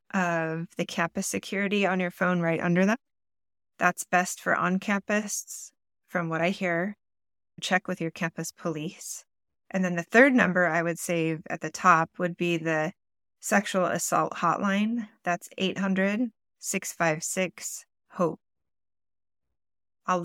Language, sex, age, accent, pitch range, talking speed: English, female, 20-39, American, 165-195 Hz, 125 wpm